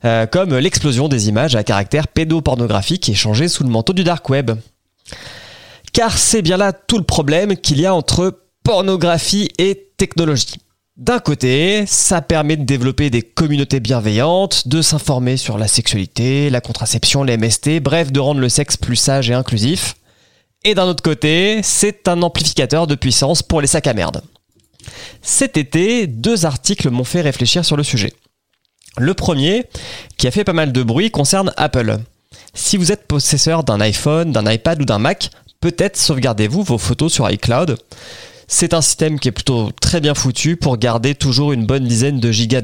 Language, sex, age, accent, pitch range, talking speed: French, male, 30-49, French, 120-165 Hz, 175 wpm